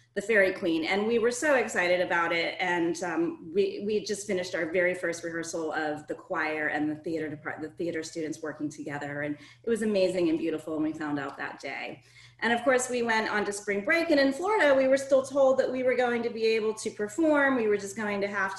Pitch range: 165-220 Hz